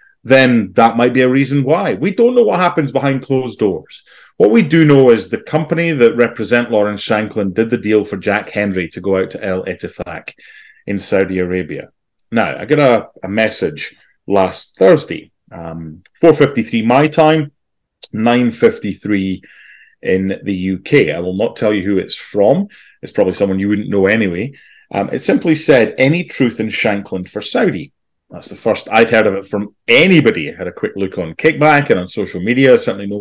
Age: 30-49